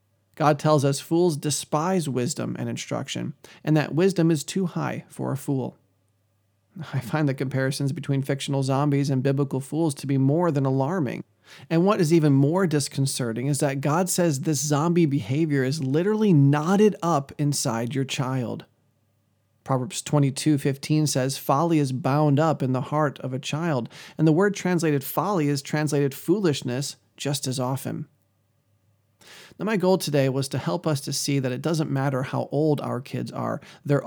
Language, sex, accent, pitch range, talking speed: English, male, American, 130-155 Hz, 165 wpm